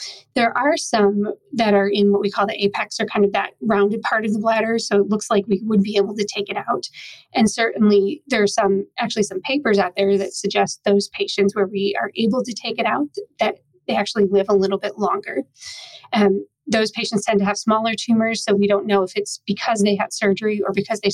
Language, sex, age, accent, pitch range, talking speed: English, female, 30-49, American, 200-225 Hz, 240 wpm